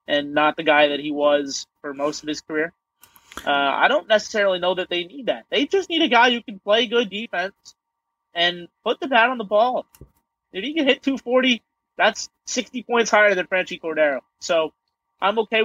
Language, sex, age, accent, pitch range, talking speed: English, male, 30-49, American, 160-210 Hz, 205 wpm